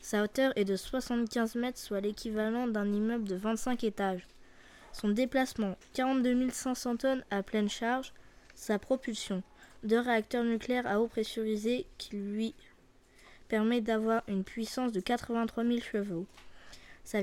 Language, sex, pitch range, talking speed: French, female, 220-260 Hz, 140 wpm